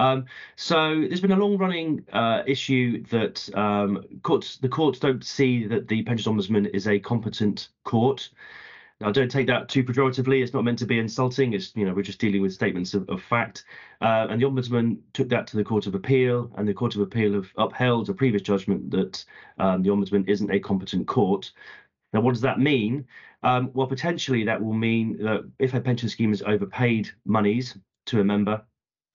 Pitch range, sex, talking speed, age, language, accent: 100-125 Hz, male, 200 wpm, 30-49, English, British